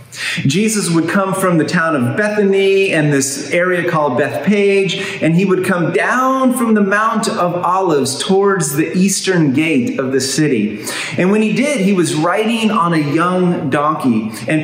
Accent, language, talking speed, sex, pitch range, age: American, English, 170 wpm, male, 140-195 Hz, 40-59